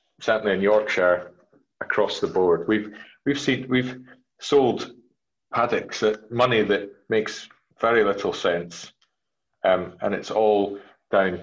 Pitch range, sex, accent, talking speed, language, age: 90-110 Hz, male, British, 125 wpm, English, 30-49